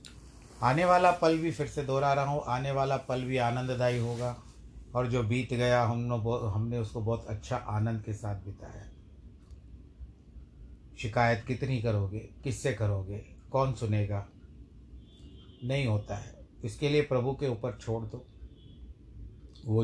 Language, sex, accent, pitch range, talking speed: Hindi, male, native, 105-130 Hz, 140 wpm